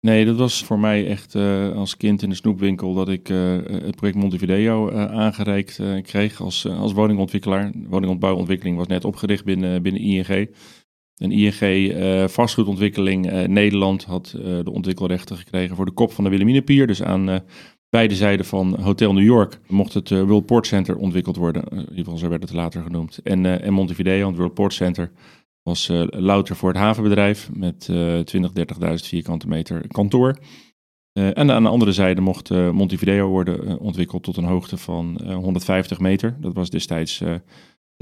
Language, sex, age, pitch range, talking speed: Dutch, male, 30-49, 90-105 Hz, 190 wpm